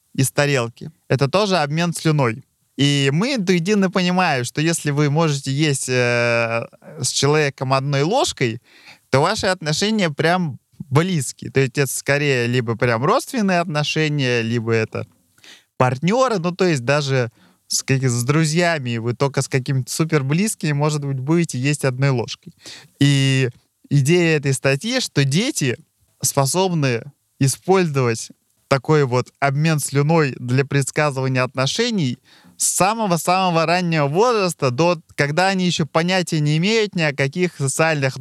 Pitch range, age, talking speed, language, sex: 135-170 Hz, 20-39, 135 wpm, Russian, male